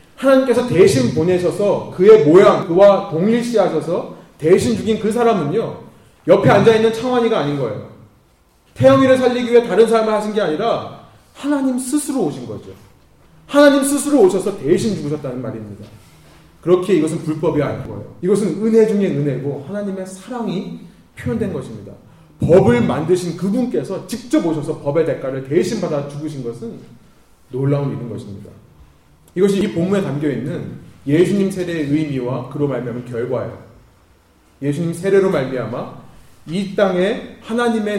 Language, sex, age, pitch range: Korean, male, 30-49, 135-210 Hz